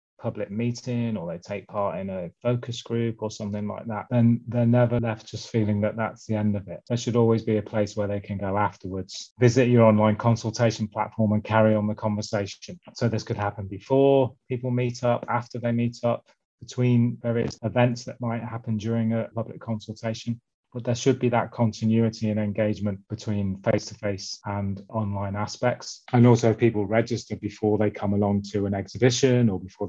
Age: 20-39